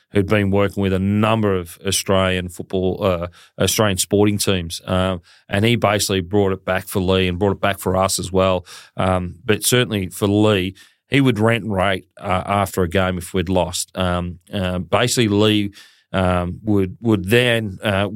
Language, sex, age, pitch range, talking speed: English, male, 40-59, 95-110 Hz, 190 wpm